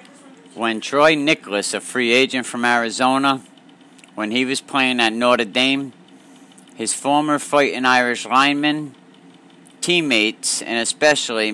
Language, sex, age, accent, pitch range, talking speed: English, male, 50-69, American, 110-140 Hz, 120 wpm